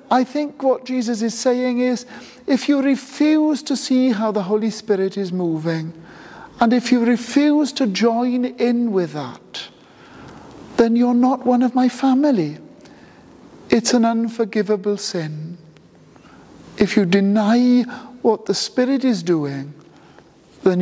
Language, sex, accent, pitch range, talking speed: English, male, British, 170-250 Hz, 135 wpm